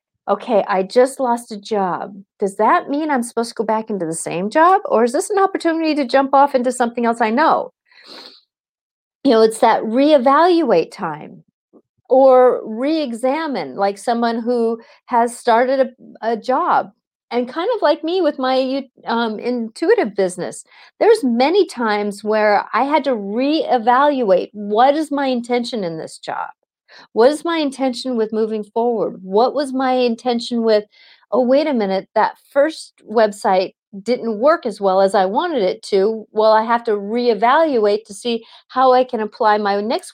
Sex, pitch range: female, 220-280 Hz